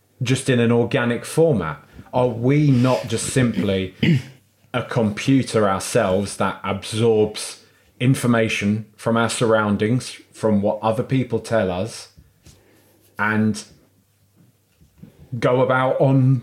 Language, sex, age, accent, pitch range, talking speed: English, male, 30-49, British, 110-140 Hz, 105 wpm